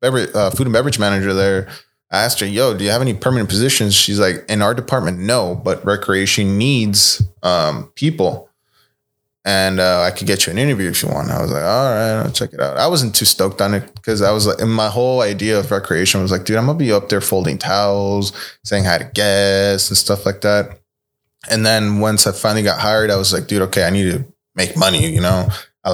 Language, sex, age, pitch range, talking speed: English, male, 20-39, 95-110 Hz, 235 wpm